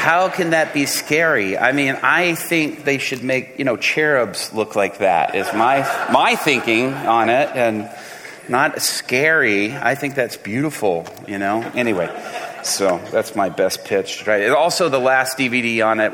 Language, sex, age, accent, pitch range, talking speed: English, male, 30-49, American, 90-110 Hz, 175 wpm